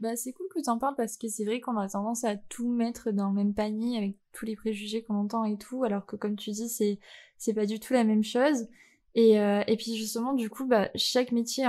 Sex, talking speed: female, 260 wpm